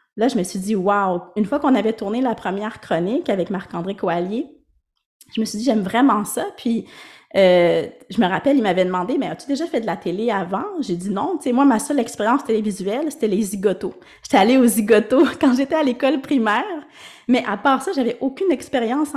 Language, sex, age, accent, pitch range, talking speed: French, female, 20-39, Canadian, 190-255 Hz, 240 wpm